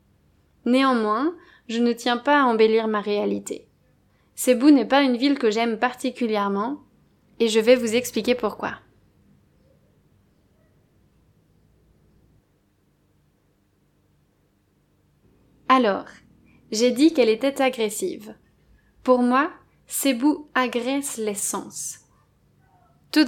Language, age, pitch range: French, 20-39, 215-255 Hz